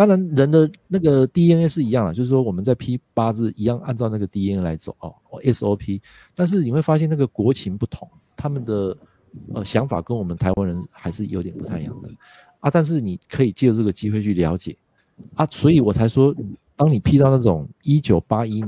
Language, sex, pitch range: Chinese, male, 105-150 Hz